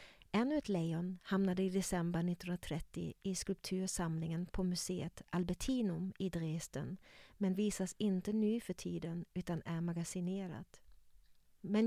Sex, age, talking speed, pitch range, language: female, 40-59, 120 wpm, 175-200 Hz, Swedish